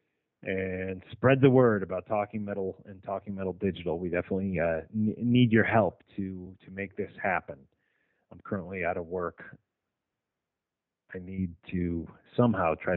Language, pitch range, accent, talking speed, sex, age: English, 90-110 Hz, American, 155 wpm, male, 30-49